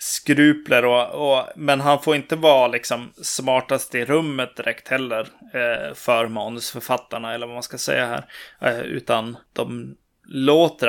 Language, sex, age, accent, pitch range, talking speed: Swedish, male, 20-39, native, 120-145 Hz, 150 wpm